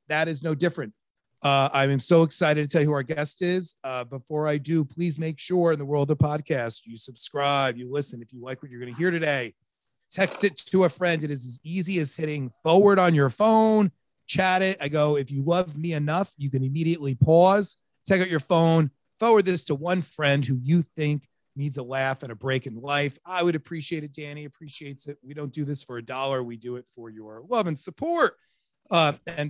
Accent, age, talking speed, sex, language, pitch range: American, 30-49, 230 wpm, male, English, 130-170 Hz